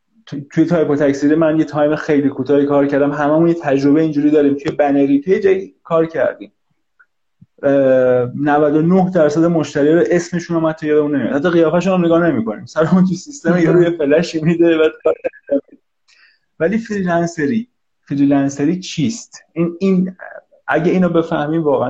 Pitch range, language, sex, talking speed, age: 140-175 Hz, Persian, male, 145 wpm, 30-49